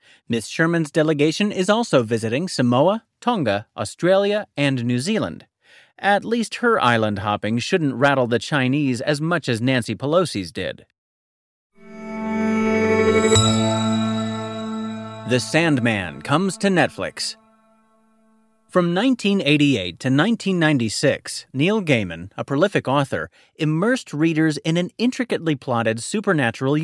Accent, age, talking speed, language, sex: American, 30-49, 105 wpm, English, male